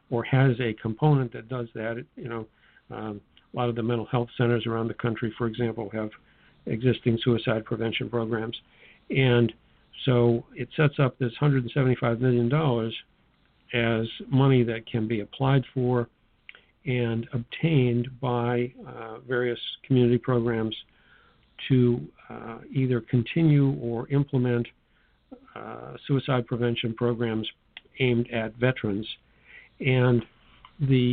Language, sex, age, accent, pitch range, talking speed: English, male, 50-69, American, 115-125 Hz, 125 wpm